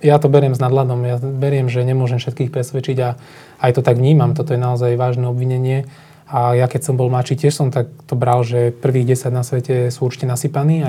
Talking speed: 225 wpm